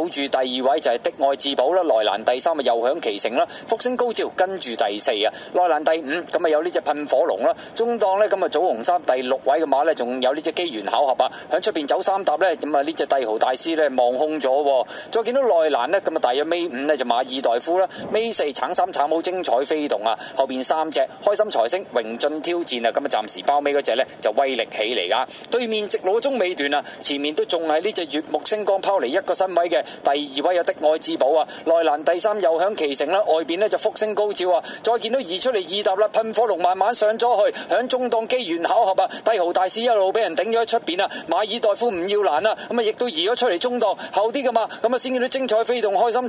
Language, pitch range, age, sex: Chinese, 165-255 Hz, 20-39, male